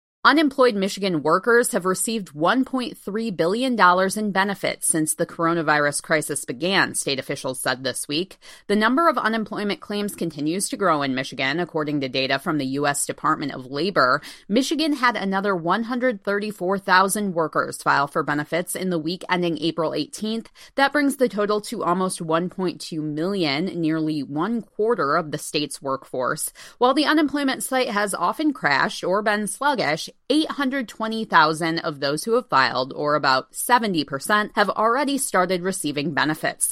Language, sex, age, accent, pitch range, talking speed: English, female, 20-39, American, 155-220 Hz, 145 wpm